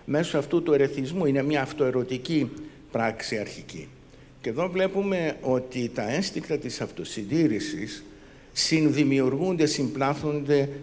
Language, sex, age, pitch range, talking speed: Greek, male, 60-79, 120-150 Hz, 105 wpm